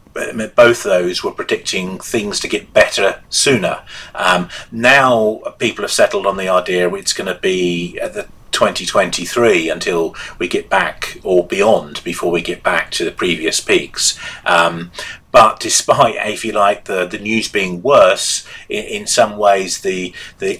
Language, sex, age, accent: English, male, 30-49, British